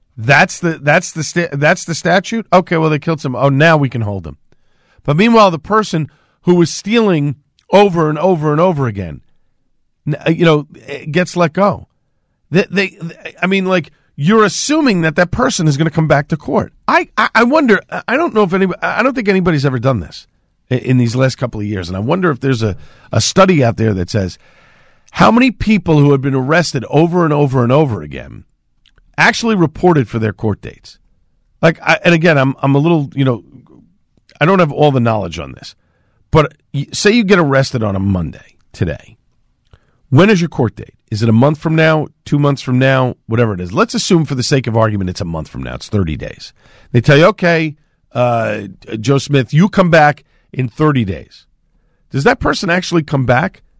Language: English